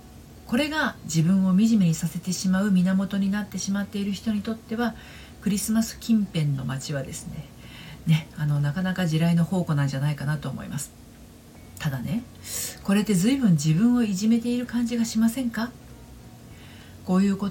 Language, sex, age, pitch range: Japanese, female, 40-59, 150-205 Hz